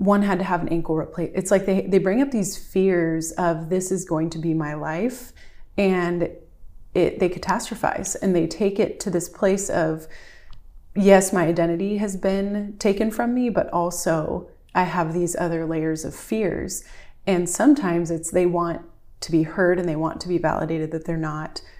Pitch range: 160-190 Hz